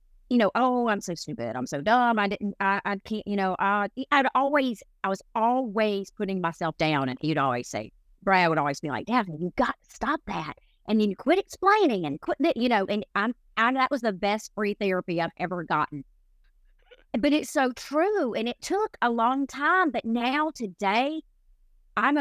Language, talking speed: English, 205 wpm